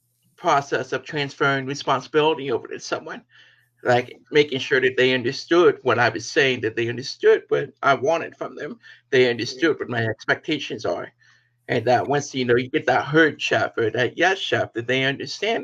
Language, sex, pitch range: English, male, 120-150 Hz